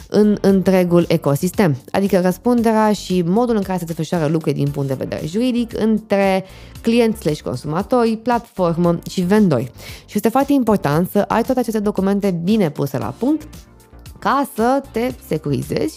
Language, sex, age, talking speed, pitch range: Romanian, female, 20-39, 155 wpm, 150-225 Hz